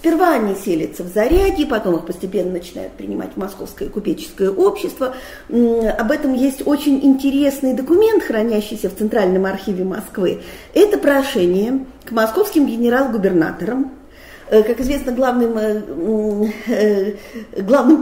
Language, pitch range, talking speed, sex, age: Russian, 210-290 Hz, 115 wpm, female, 40-59